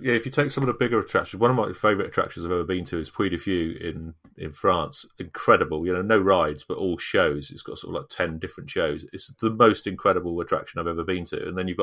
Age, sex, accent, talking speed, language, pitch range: 30-49, male, British, 260 wpm, English, 90-120 Hz